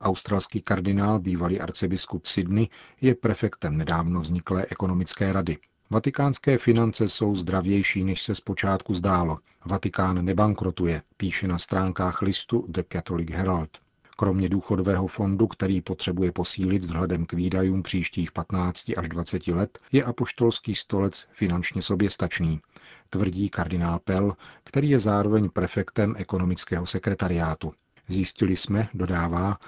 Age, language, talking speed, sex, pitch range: 40-59, Czech, 120 wpm, male, 90-100 Hz